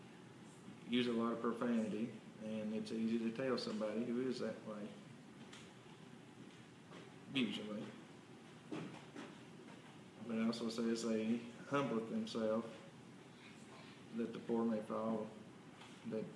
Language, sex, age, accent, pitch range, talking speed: English, male, 40-59, American, 110-120 Hz, 105 wpm